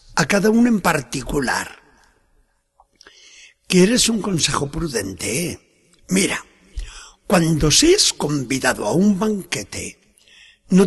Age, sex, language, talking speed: 60-79, male, Spanish, 95 wpm